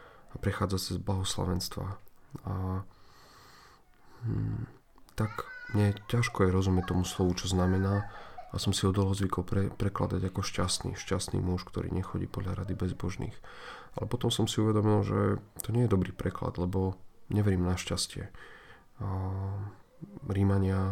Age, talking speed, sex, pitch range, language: 40-59, 140 wpm, male, 95-105 Hz, Slovak